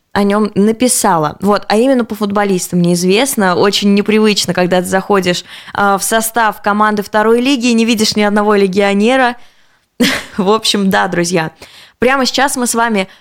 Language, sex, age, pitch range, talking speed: Russian, female, 20-39, 195-235 Hz, 160 wpm